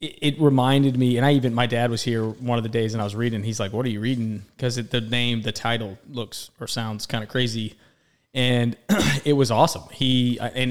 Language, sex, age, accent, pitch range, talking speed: English, male, 20-39, American, 115-130 Hz, 230 wpm